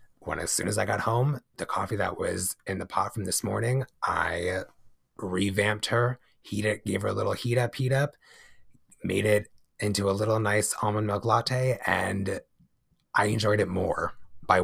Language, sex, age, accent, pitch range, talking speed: English, male, 30-49, American, 100-120 Hz, 185 wpm